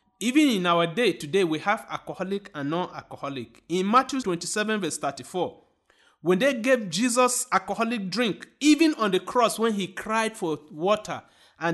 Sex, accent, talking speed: male, Nigerian, 165 wpm